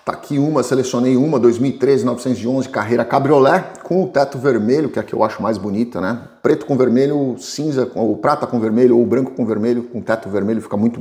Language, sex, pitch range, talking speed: Portuguese, male, 115-150 Hz, 215 wpm